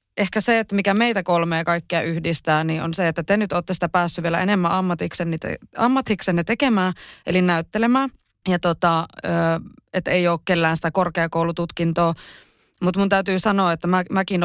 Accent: native